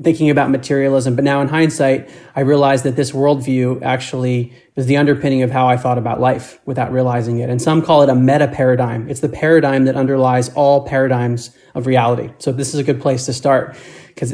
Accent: American